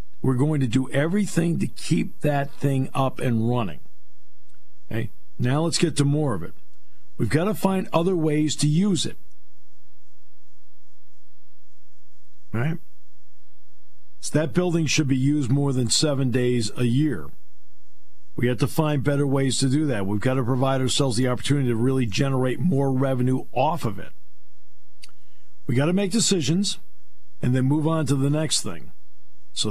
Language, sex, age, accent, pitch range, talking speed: English, male, 50-69, American, 120-155 Hz, 160 wpm